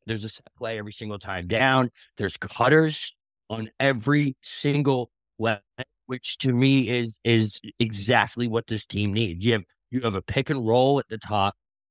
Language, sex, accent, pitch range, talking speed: English, male, American, 100-125 Hz, 175 wpm